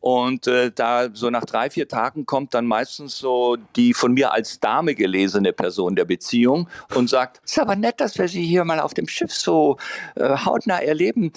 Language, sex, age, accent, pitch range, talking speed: German, male, 50-69, German, 125-175 Hz, 205 wpm